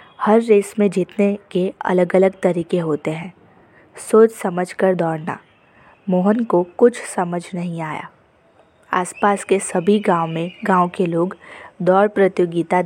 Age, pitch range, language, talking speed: 20-39, 175-200 Hz, Hindi, 135 wpm